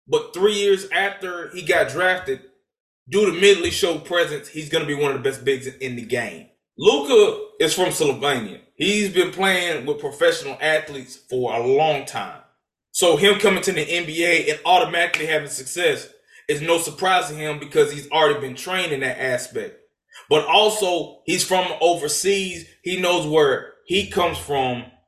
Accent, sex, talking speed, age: American, male, 170 wpm, 20-39